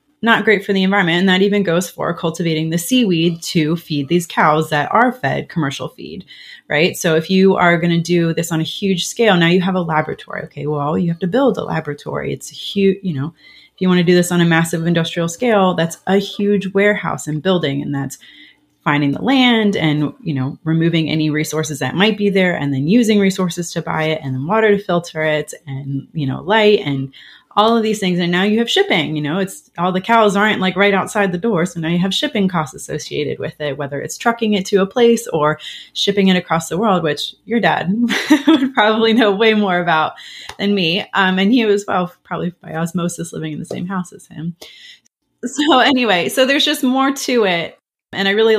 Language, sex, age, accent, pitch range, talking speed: English, female, 30-49, American, 165-210 Hz, 225 wpm